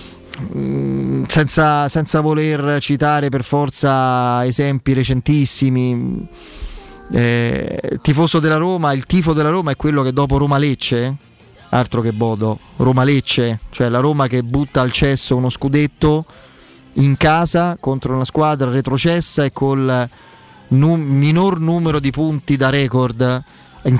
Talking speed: 130 wpm